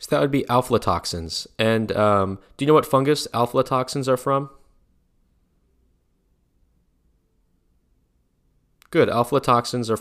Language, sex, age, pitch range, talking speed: English, male, 20-39, 85-125 Hz, 110 wpm